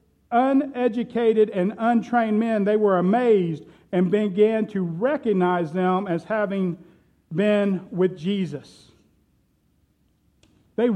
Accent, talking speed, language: American, 100 wpm, English